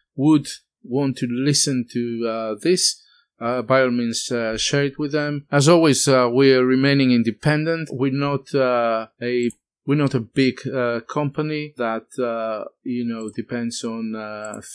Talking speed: 165 wpm